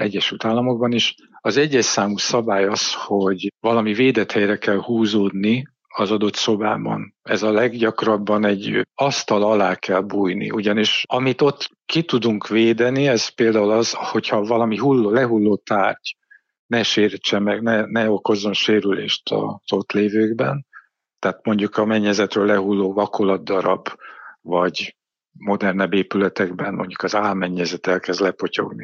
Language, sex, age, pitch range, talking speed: Hungarian, male, 50-69, 100-120 Hz, 125 wpm